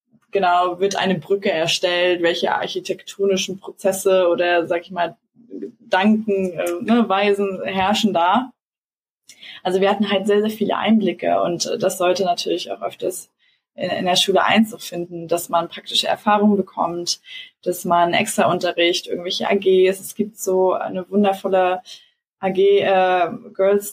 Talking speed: 140 wpm